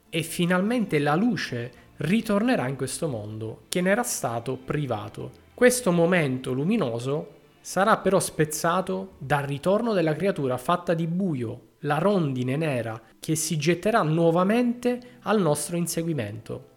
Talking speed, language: 130 wpm, Italian